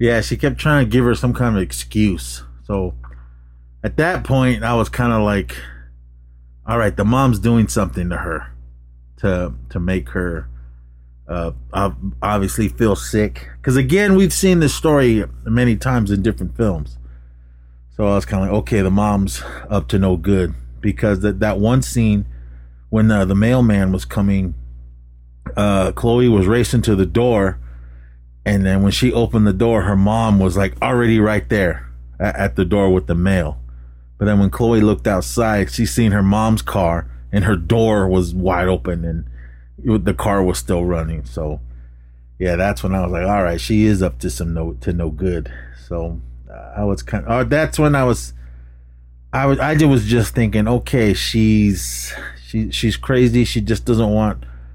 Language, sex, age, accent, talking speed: English, male, 30-49, American, 180 wpm